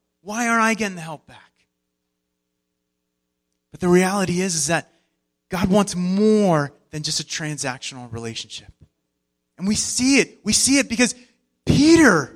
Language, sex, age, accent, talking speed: English, male, 30-49, American, 145 wpm